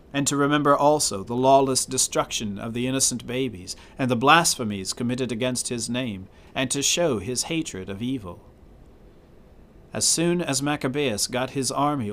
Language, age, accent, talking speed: English, 40-59, American, 160 wpm